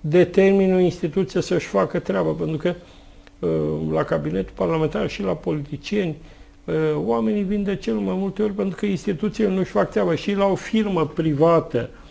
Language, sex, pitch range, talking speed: Romanian, male, 130-165 Hz, 155 wpm